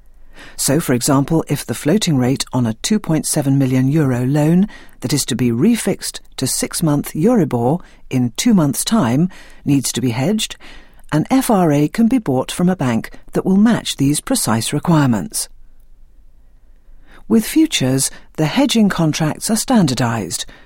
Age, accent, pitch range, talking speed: 60-79, British, 130-205 Hz, 150 wpm